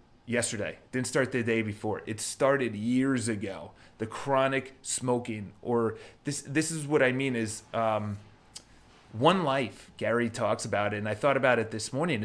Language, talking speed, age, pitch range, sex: English, 170 wpm, 30-49, 110-130 Hz, male